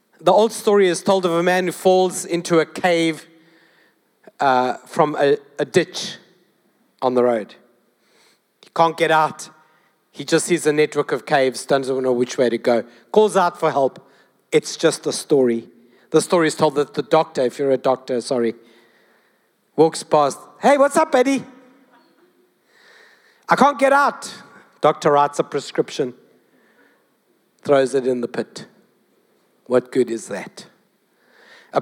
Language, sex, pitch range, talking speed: English, male, 130-195 Hz, 155 wpm